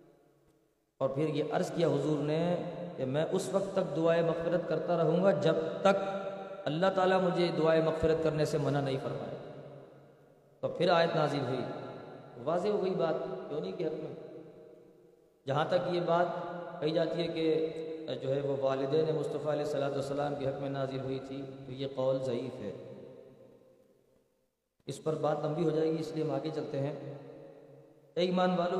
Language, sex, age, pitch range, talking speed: Urdu, male, 40-59, 145-170 Hz, 180 wpm